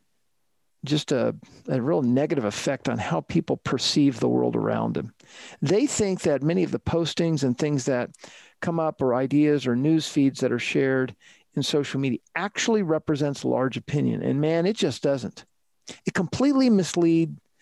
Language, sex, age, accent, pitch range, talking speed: English, male, 50-69, American, 140-180 Hz, 165 wpm